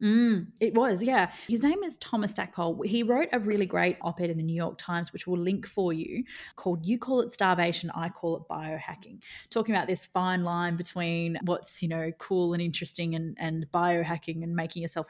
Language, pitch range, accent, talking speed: English, 175-235 Hz, Australian, 205 wpm